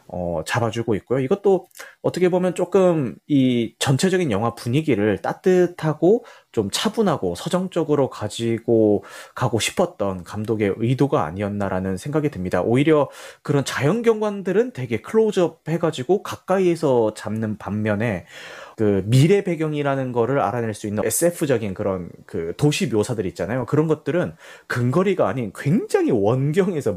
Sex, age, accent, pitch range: male, 30-49, native, 105-155 Hz